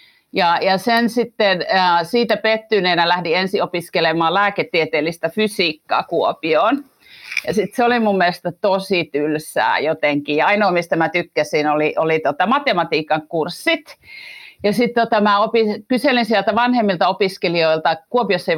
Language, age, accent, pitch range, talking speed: Finnish, 50-69, native, 155-215 Hz, 135 wpm